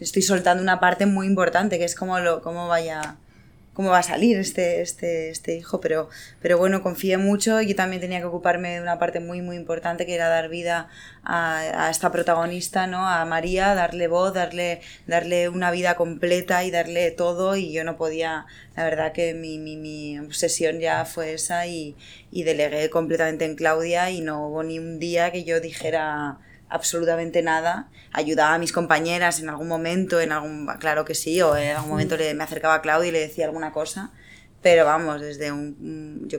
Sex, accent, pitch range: female, Spanish, 160-175 Hz